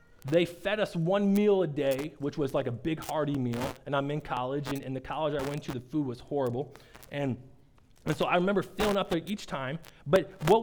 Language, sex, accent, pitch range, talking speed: English, male, American, 140-190 Hz, 225 wpm